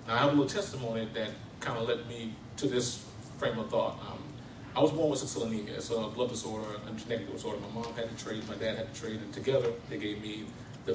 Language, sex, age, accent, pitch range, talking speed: English, male, 30-49, American, 105-120 Hz, 260 wpm